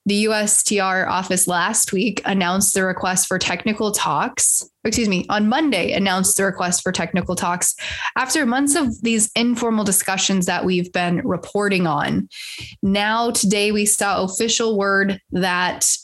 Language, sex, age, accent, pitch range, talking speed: English, female, 20-39, American, 185-230 Hz, 145 wpm